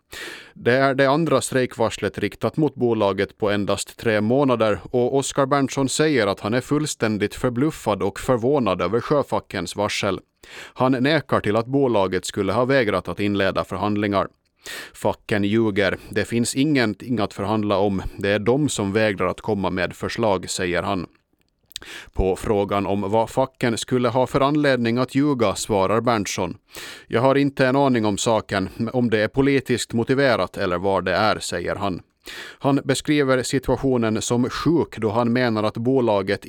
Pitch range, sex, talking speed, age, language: 100-130 Hz, male, 160 wpm, 30-49, Swedish